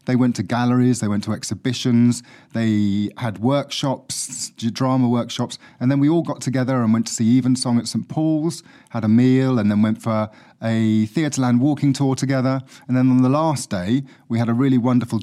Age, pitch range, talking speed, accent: 30-49, 110-135 Hz, 195 wpm, British